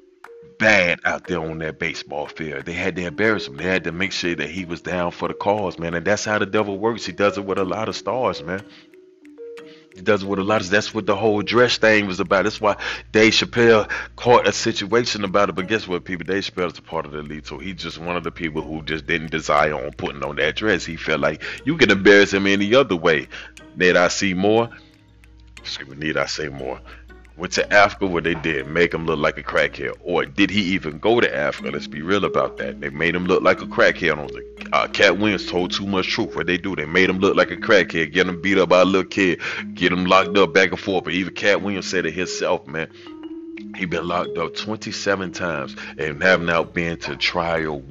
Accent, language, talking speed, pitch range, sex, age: American, English, 245 wpm, 85-105 Hz, male, 30-49